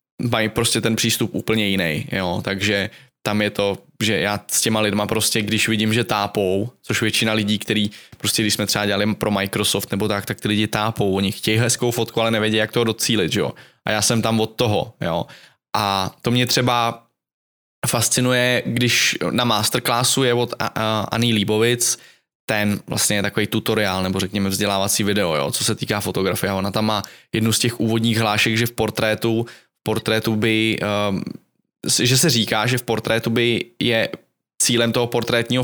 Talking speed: 180 wpm